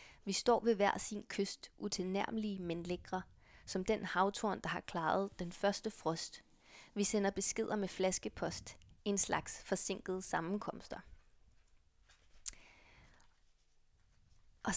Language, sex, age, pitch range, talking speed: Danish, female, 20-39, 180-210 Hz, 115 wpm